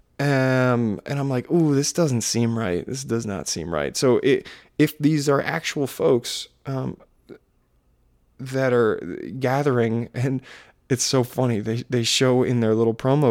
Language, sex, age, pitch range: English, male, 20-39, 115-125 Hz